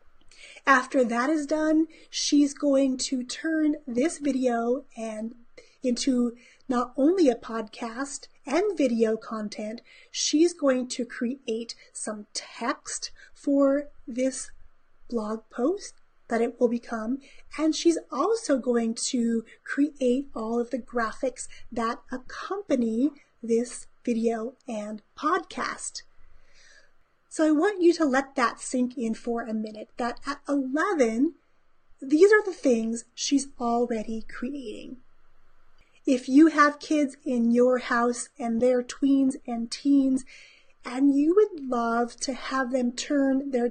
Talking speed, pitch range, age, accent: 125 wpm, 235-295 Hz, 30-49, American